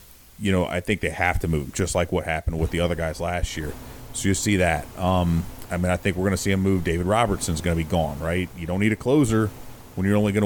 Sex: male